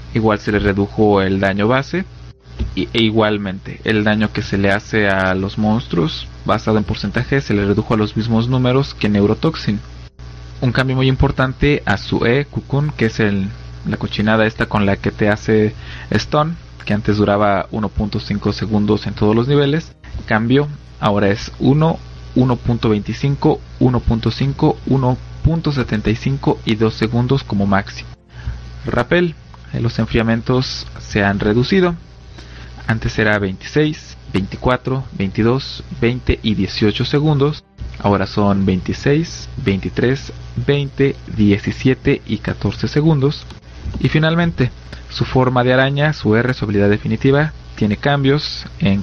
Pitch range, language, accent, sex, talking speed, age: 100-130 Hz, Spanish, Mexican, male, 135 wpm, 20-39